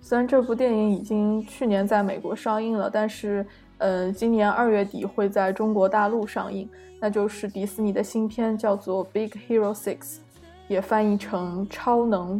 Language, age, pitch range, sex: Chinese, 20-39, 200-245 Hz, female